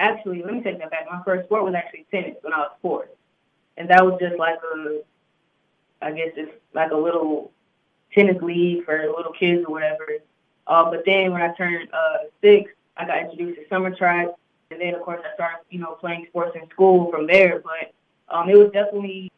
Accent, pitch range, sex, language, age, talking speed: American, 170-195 Hz, female, English, 20-39, 210 wpm